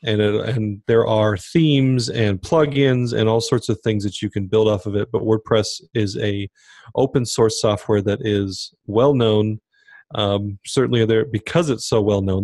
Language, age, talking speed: English, 30-49, 180 wpm